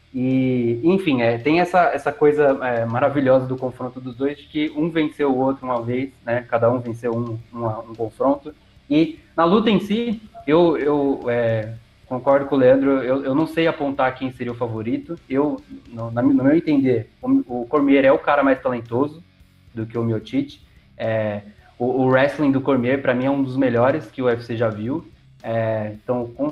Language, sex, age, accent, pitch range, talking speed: Portuguese, male, 20-39, Brazilian, 120-150 Hz, 195 wpm